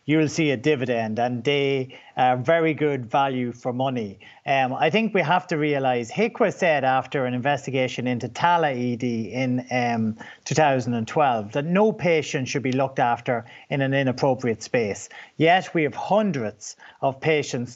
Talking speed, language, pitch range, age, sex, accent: 160 wpm, English, 135-185 Hz, 40-59, male, Irish